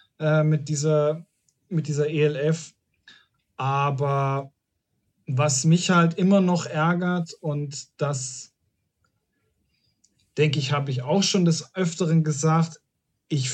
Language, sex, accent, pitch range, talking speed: German, male, German, 140-170 Hz, 105 wpm